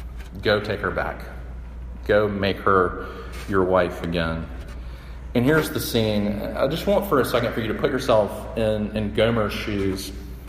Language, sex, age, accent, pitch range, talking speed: English, male, 40-59, American, 85-125 Hz, 165 wpm